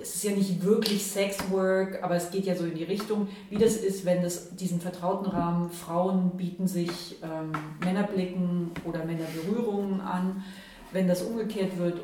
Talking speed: 170 wpm